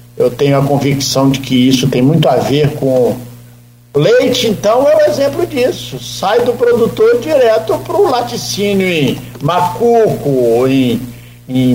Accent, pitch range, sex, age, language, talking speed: Brazilian, 130-210 Hz, male, 60-79, Portuguese, 150 wpm